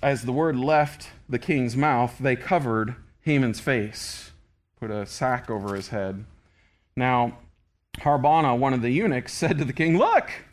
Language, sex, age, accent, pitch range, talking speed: English, male, 40-59, American, 110-170 Hz, 160 wpm